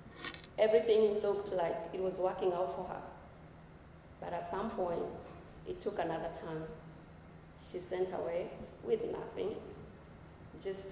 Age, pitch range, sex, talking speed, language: 20-39, 175-210 Hz, female, 125 wpm, English